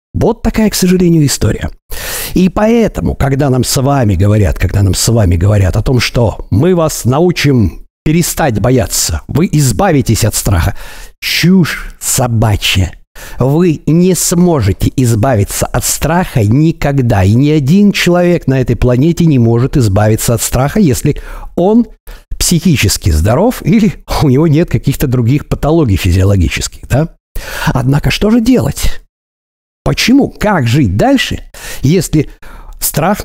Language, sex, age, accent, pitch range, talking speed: Russian, male, 60-79, native, 120-170 Hz, 130 wpm